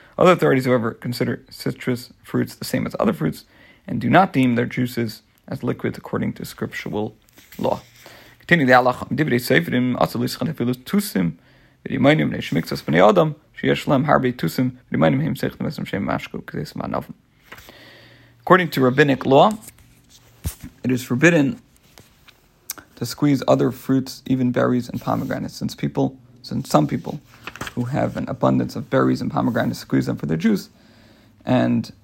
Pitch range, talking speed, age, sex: 80-130 Hz, 105 wpm, 40-59, male